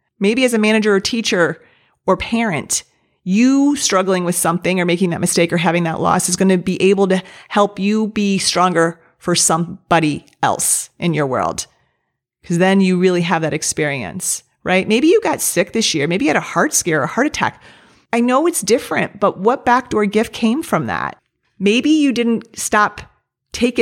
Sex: female